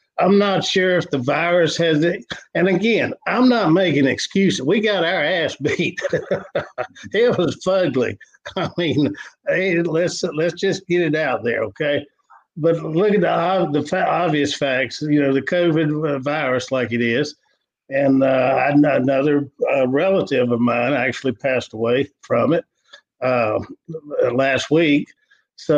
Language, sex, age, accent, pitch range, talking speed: English, male, 60-79, American, 140-180 Hz, 150 wpm